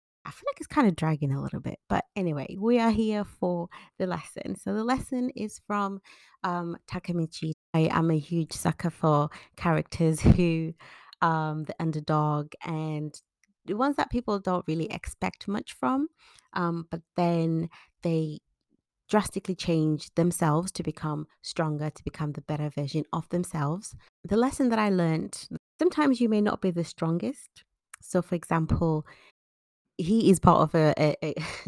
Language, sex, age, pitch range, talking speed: English, female, 30-49, 155-195 Hz, 160 wpm